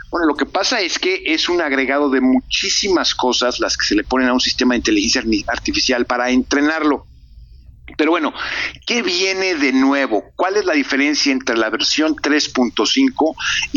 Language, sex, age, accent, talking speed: Spanish, male, 50-69, Mexican, 170 wpm